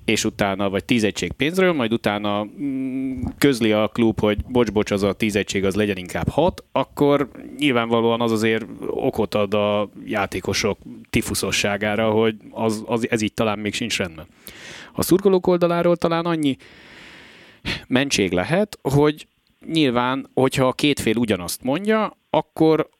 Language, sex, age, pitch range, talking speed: Hungarian, male, 30-49, 100-135 Hz, 135 wpm